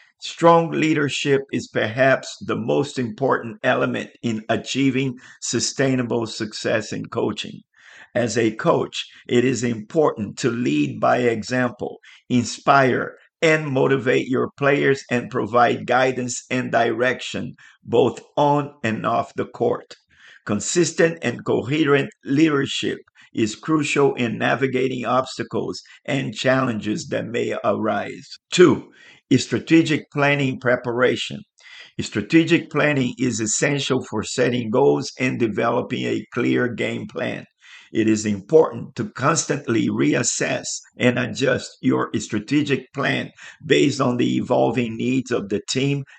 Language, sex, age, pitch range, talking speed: English, male, 50-69, 120-140 Hz, 115 wpm